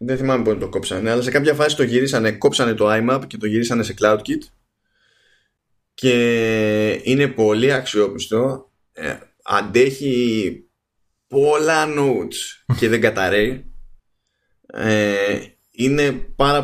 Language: Greek